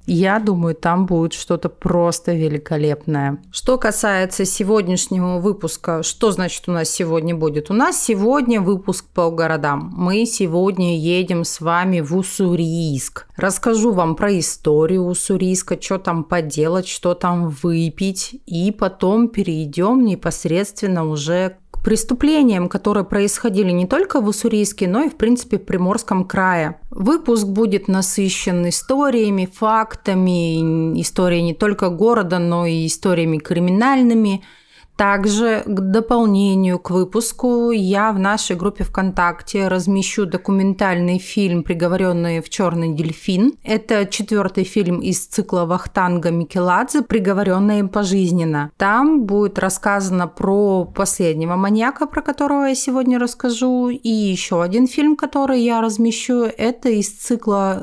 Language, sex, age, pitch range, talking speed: Russian, female, 30-49, 175-225 Hz, 125 wpm